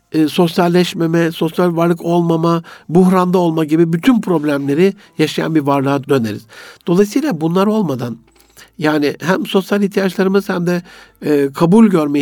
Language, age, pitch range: Turkish, 60-79, 140-185 Hz